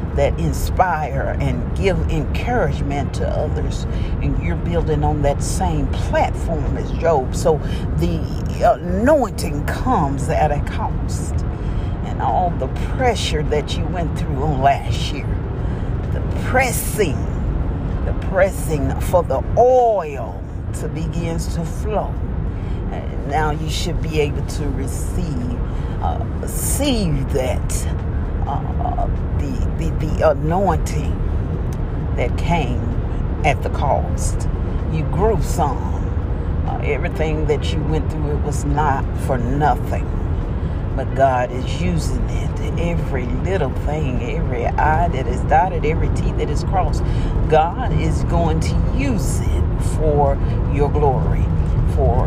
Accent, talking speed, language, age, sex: American, 125 wpm, English, 40-59, female